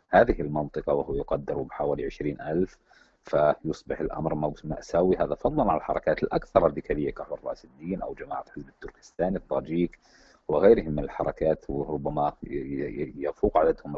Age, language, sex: 50-69, Arabic, male